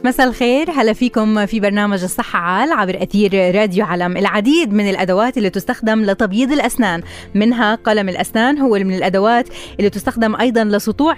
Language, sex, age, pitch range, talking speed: Arabic, female, 20-39, 205-250 Hz, 155 wpm